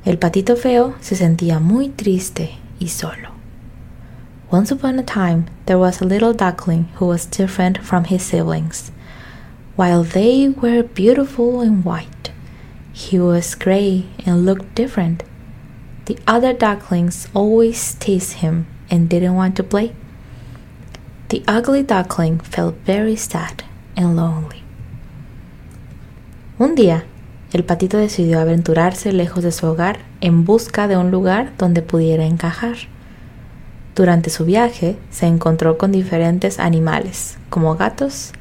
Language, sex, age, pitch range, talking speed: Spanish, female, 20-39, 170-210 Hz, 130 wpm